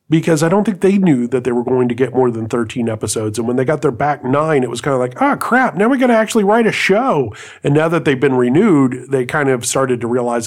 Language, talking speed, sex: English, 285 wpm, male